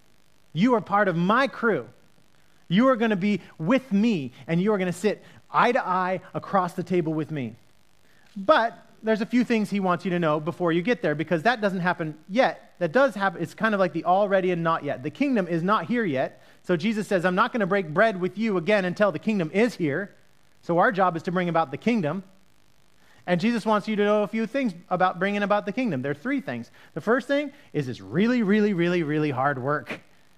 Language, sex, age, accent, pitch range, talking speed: English, male, 30-49, American, 170-230 Hz, 235 wpm